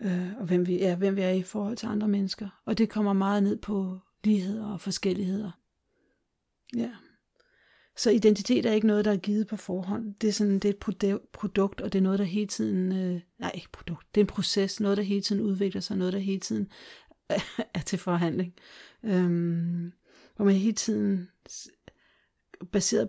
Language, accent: Danish, native